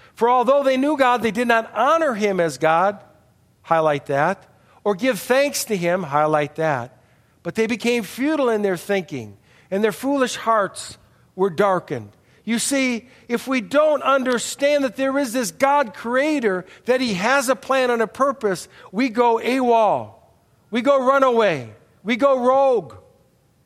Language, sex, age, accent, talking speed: English, male, 50-69, American, 160 wpm